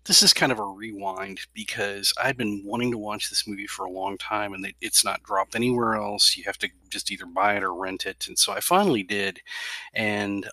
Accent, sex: American, male